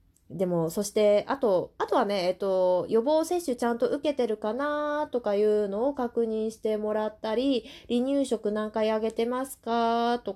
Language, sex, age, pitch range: Japanese, female, 20-39, 190-250 Hz